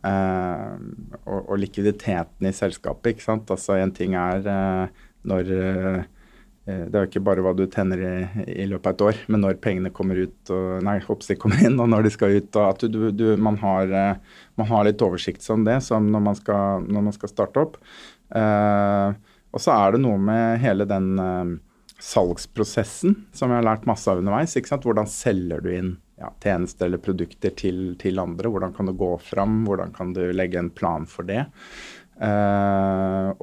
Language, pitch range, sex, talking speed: English, 95-110 Hz, male, 180 wpm